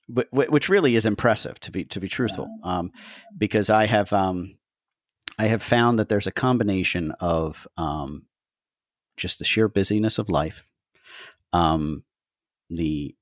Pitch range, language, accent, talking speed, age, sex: 80-100 Hz, English, American, 145 wpm, 40-59, male